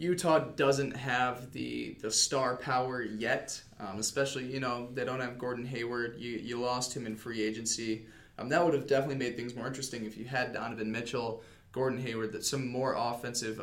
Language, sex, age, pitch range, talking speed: English, male, 20-39, 110-135 Hz, 195 wpm